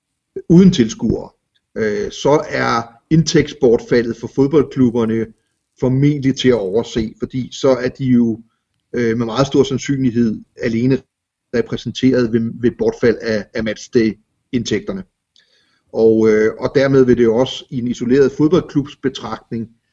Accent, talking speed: native, 105 wpm